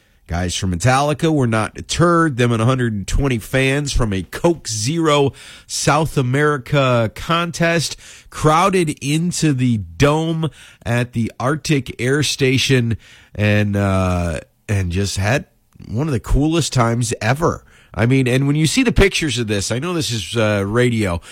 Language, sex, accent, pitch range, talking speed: English, male, American, 110-150 Hz, 150 wpm